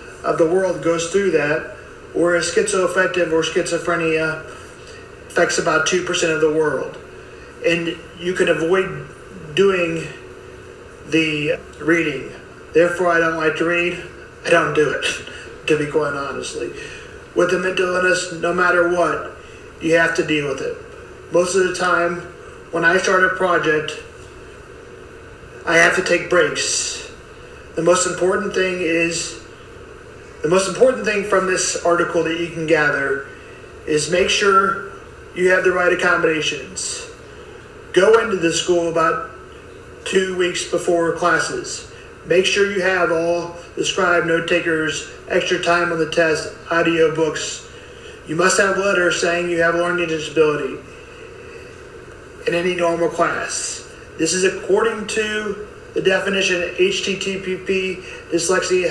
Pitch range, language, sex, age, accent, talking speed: 170-215 Hz, English, male, 40-59, American, 140 wpm